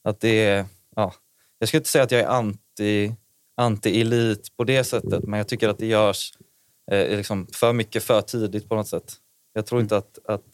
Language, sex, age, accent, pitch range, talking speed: Swedish, male, 20-39, native, 105-115 Hz, 200 wpm